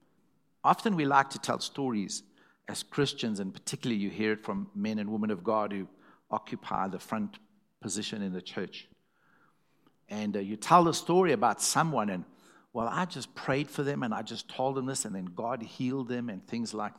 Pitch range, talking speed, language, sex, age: 125-195 Hz, 200 wpm, English, male, 60-79